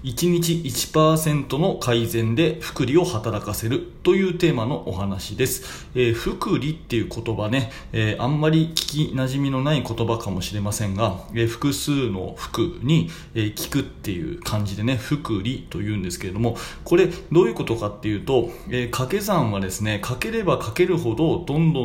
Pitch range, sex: 110-155 Hz, male